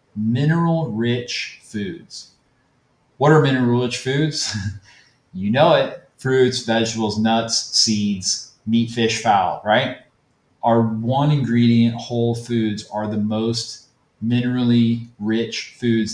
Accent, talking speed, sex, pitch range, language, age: American, 110 wpm, male, 110-135 Hz, English, 30-49